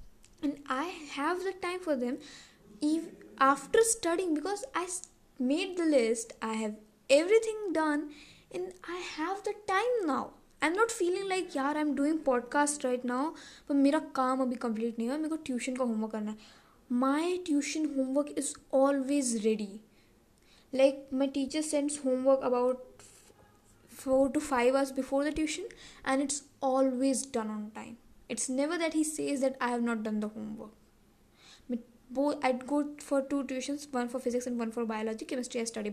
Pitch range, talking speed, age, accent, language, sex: 240-300 Hz, 165 wpm, 10-29, Indian, English, female